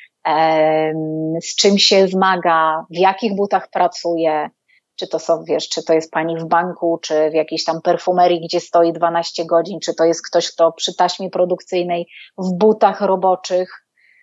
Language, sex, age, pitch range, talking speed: Polish, female, 30-49, 170-225 Hz, 160 wpm